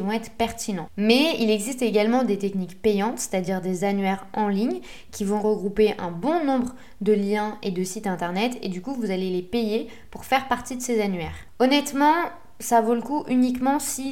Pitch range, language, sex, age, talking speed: 195-245 Hz, French, female, 20-39, 205 wpm